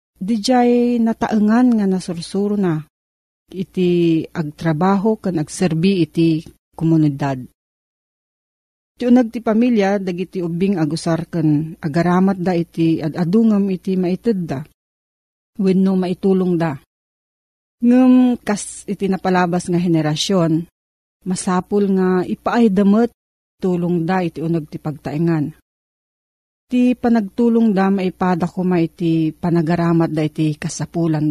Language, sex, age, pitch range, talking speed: Filipino, female, 40-59, 165-210 Hz, 105 wpm